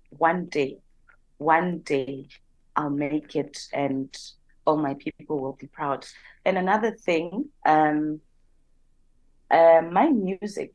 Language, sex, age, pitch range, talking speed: English, female, 30-49, 150-185 Hz, 115 wpm